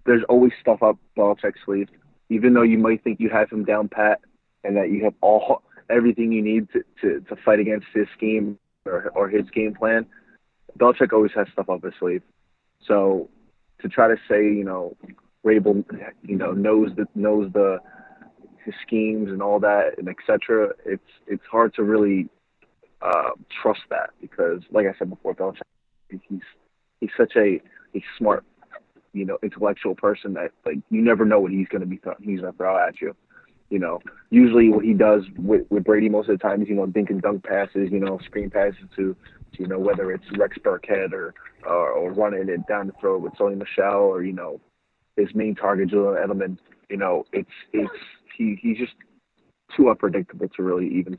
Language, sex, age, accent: English, male, 30-49, American